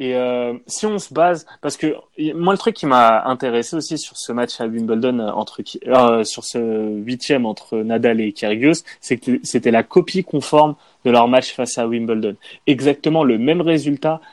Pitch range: 115-145 Hz